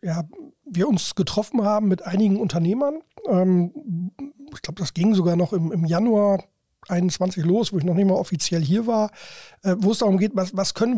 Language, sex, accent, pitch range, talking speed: German, male, German, 180-215 Hz, 175 wpm